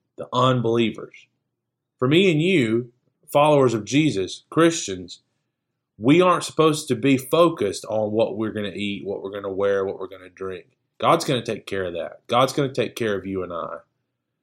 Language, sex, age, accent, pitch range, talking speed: English, male, 30-49, American, 110-140 Hz, 200 wpm